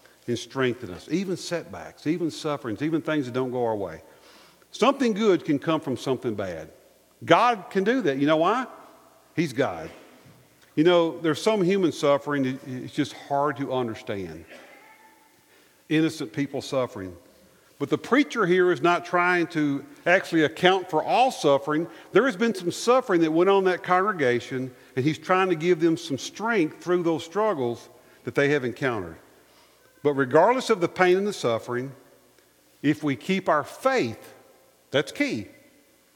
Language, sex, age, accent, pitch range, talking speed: English, male, 50-69, American, 105-170 Hz, 165 wpm